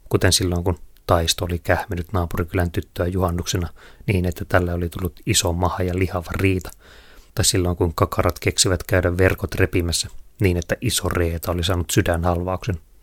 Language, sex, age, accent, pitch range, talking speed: Finnish, male, 30-49, native, 85-95 Hz, 155 wpm